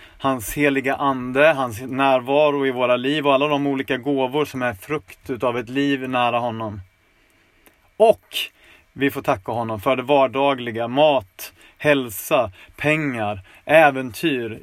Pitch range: 115-145 Hz